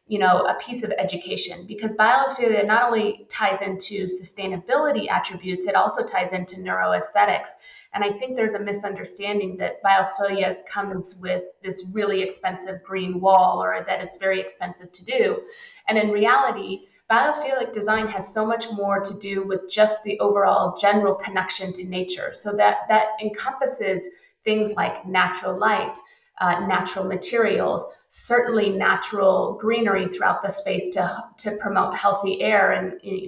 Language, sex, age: English, female, 30-49